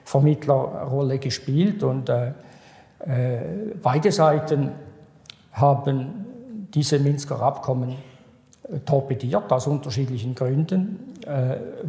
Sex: male